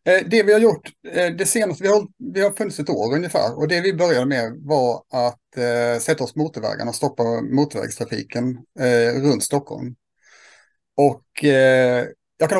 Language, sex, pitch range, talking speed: Swedish, male, 120-150 Hz, 165 wpm